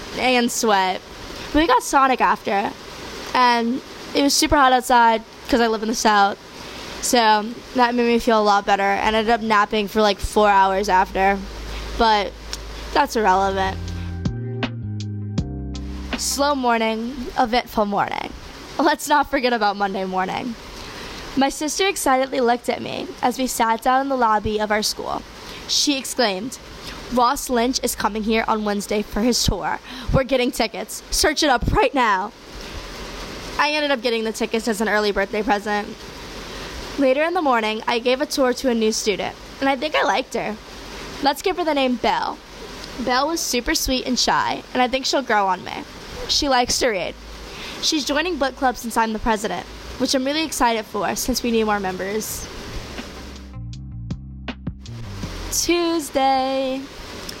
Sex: female